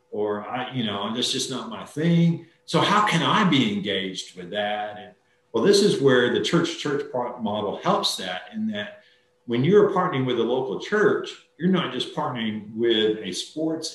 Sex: male